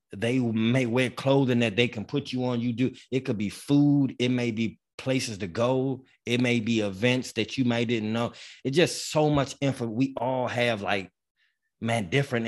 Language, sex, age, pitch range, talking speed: English, male, 20-39, 110-140 Hz, 200 wpm